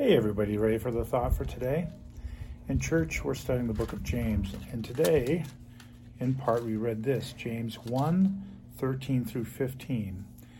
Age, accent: 50-69, American